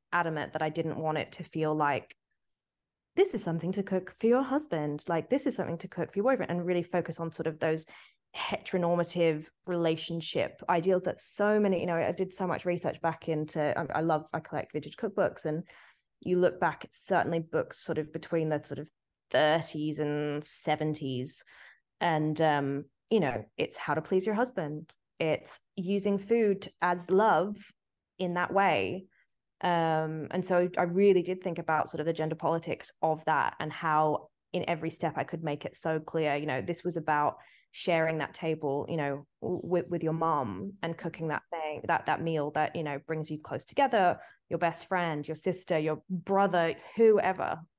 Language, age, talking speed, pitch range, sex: English, 20-39, 190 wpm, 155-180 Hz, female